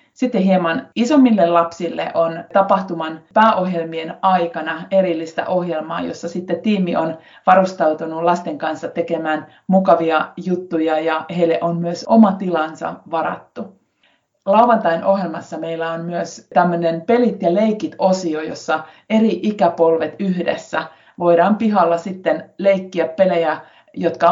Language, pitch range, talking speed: Finnish, 165-190 Hz, 115 wpm